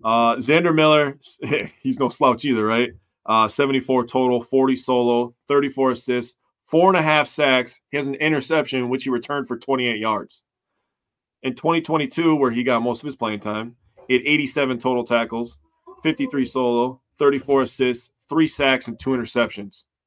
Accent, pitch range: American, 120-145 Hz